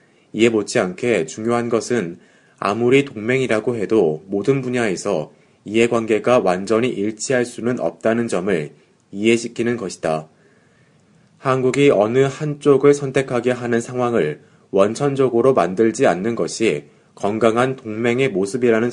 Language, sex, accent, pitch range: Korean, male, native, 110-135 Hz